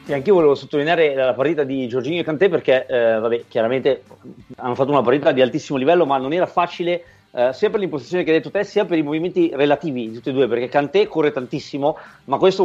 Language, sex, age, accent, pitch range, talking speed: Italian, male, 30-49, native, 135-170 Hz, 230 wpm